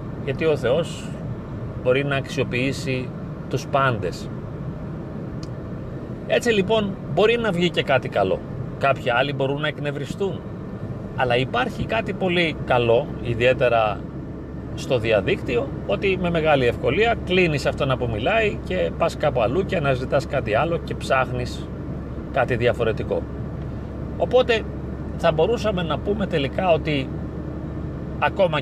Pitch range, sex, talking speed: 115-150 Hz, male, 120 wpm